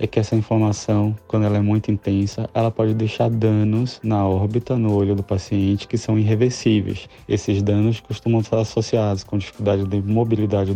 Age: 20-39